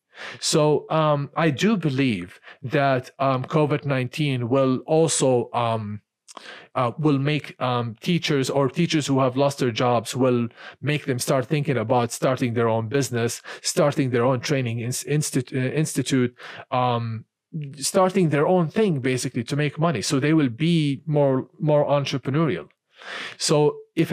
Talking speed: 140 wpm